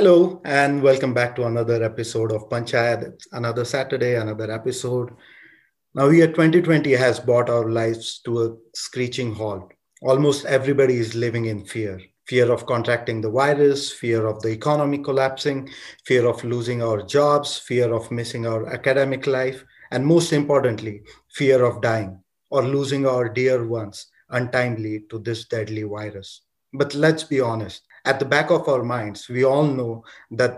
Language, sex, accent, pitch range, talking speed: English, male, Indian, 115-135 Hz, 160 wpm